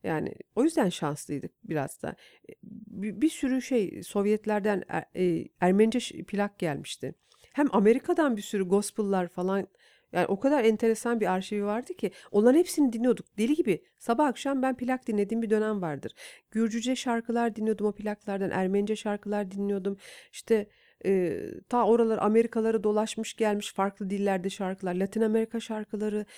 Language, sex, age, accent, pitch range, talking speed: Turkish, female, 50-69, native, 185-235 Hz, 145 wpm